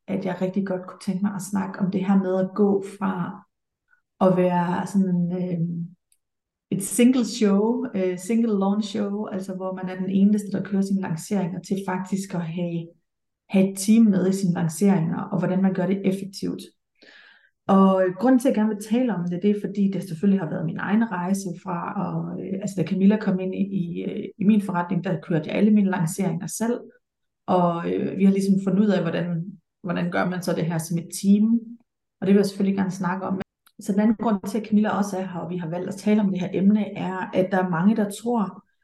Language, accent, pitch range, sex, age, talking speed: Danish, native, 180-205 Hz, female, 30-49, 220 wpm